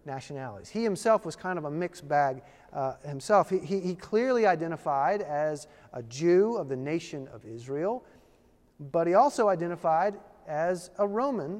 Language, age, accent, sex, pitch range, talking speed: English, 40-59, American, male, 160-220 Hz, 160 wpm